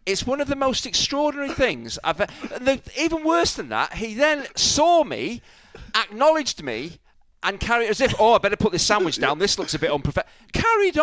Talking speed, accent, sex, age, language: 200 wpm, British, male, 40-59, English